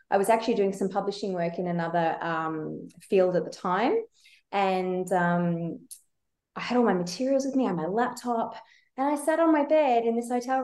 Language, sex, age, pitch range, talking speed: English, female, 20-39, 185-225 Hz, 195 wpm